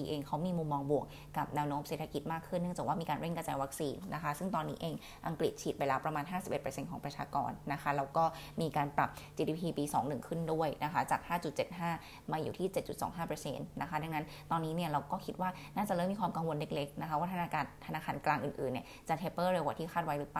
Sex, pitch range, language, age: female, 145-170 Hz, Thai, 20-39